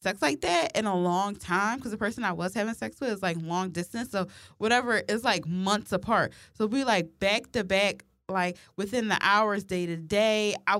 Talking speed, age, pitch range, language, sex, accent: 215 wpm, 20-39, 180-215 Hz, English, female, American